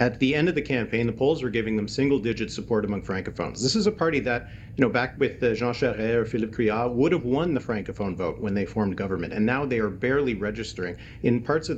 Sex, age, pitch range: male, 40-59, 110-130 Hz